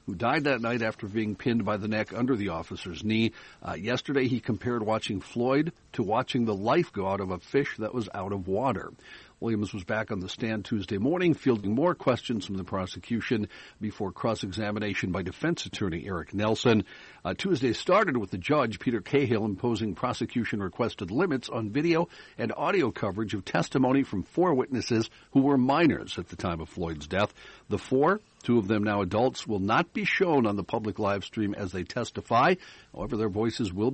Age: 60-79